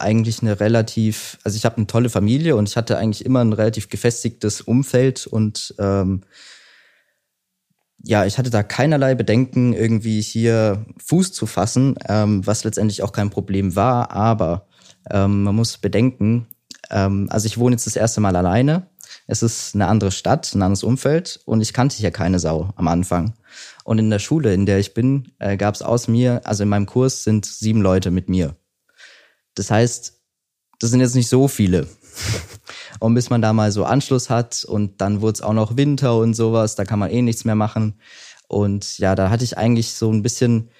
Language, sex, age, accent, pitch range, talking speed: German, male, 20-39, German, 100-120 Hz, 190 wpm